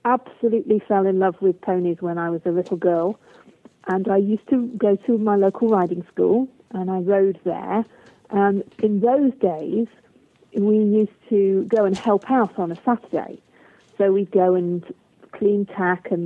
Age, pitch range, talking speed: 40-59, 185-220 Hz, 175 wpm